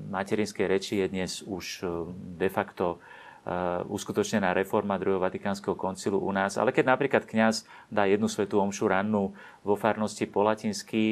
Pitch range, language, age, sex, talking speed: 95-115 Hz, Slovak, 30-49, male, 145 wpm